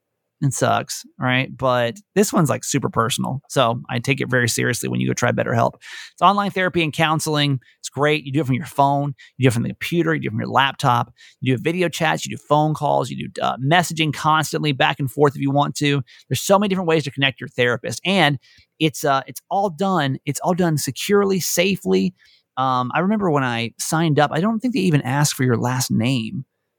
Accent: American